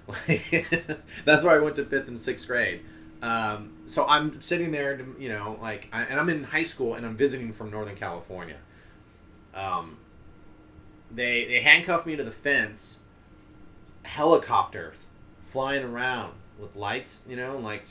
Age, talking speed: 30-49, 155 wpm